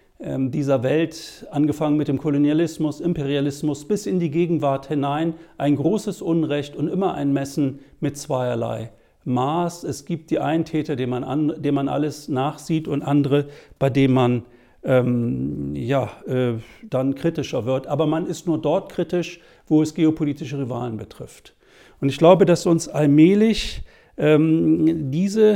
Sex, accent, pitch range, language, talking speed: male, German, 140-170 Hz, German, 145 wpm